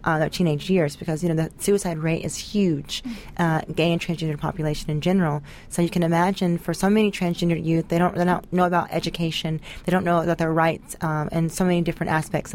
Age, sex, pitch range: 30-49, female, 155-175 Hz